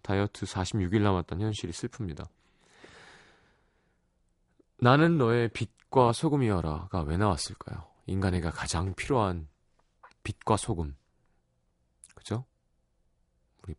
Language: Korean